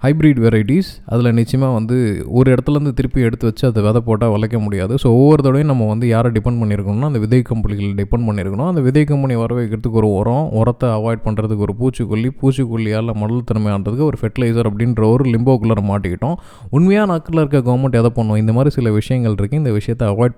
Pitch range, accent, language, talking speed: 110-140 Hz, native, Tamil, 185 wpm